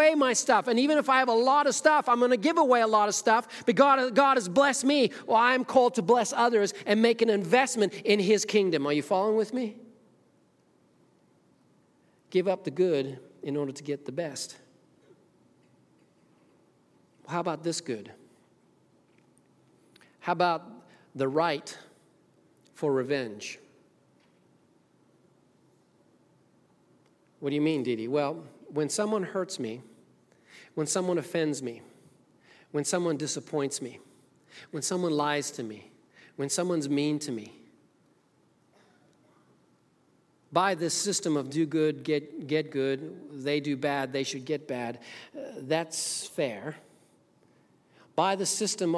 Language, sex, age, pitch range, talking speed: English, male, 40-59, 145-210 Hz, 140 wpm